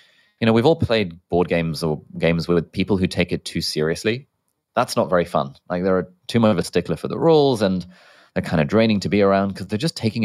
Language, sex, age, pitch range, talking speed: English, male, 20-39, 85-105 Hz, 245 wpm